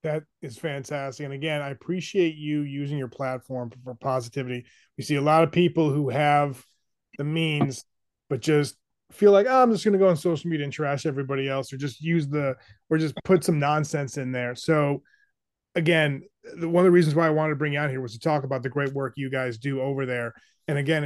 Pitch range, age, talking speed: 135-165 Hz, 20-39, 230 wpm